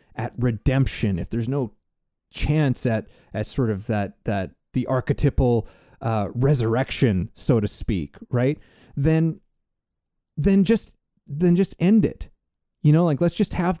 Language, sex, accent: English, male, American